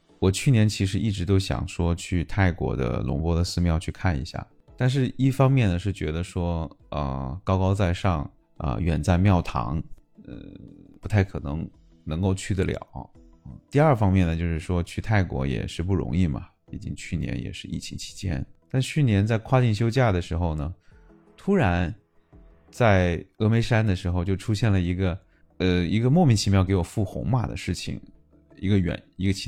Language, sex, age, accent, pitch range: Chinese, male, 20-39, native, 85-105 Hz